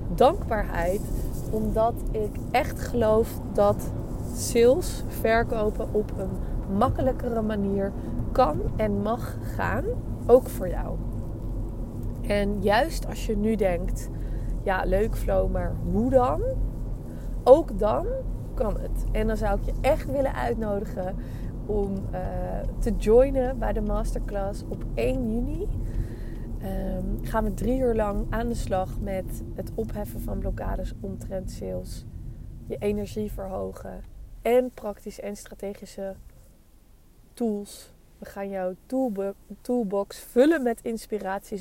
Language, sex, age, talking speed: Dutch, female, 20-39, 125 wpm